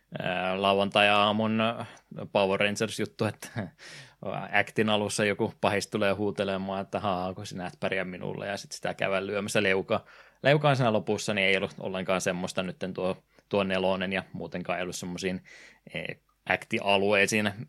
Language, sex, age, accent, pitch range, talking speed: Finnish, male, 20-39, native, 95-110 Hz, 145 wpm